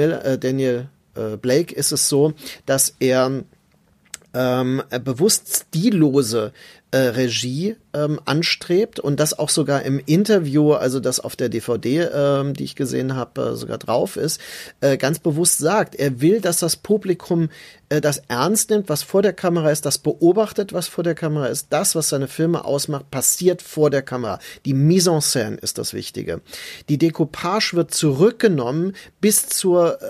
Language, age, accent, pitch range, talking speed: German, 40-59, German, 135-170 Hz, 160 wpm